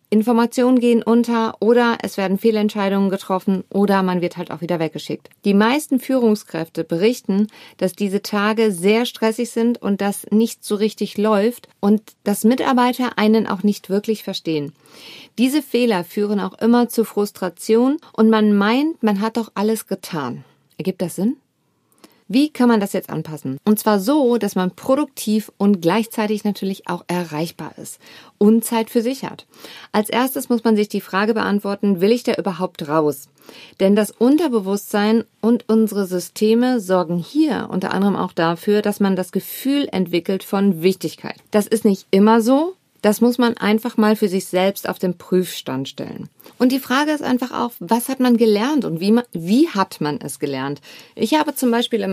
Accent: German